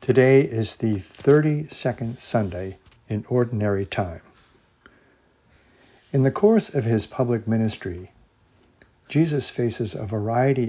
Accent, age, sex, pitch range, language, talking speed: American, 60-79, male, 105-135 Hz, English, 105 wpm